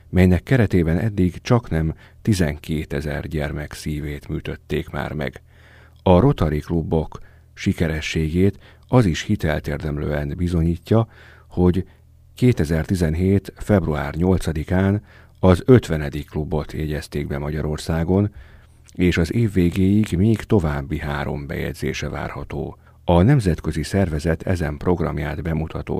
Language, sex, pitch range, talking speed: Hungarian, male, 75-95 Hz, 105 wpm